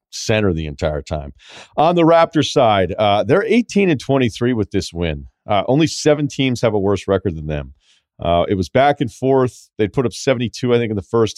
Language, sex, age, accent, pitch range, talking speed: English, male, 40-59, American, 95-115 Hz, 215 wpm